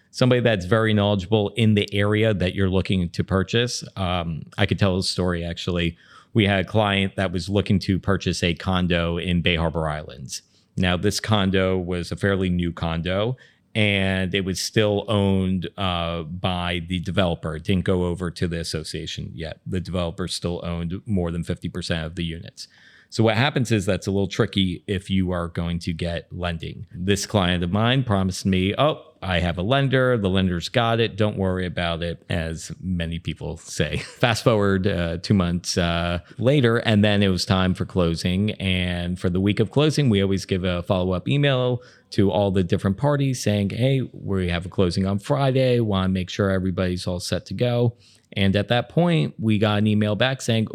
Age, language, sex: 40-59, English, male